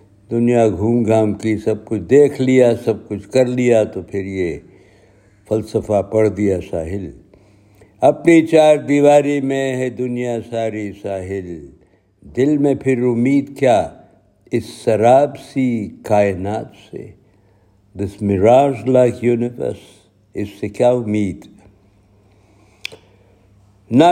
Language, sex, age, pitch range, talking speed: Urdu, male, 60-79, 100-130 Hz, 115 wpm